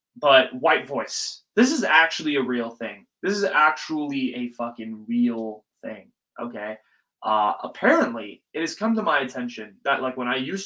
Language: English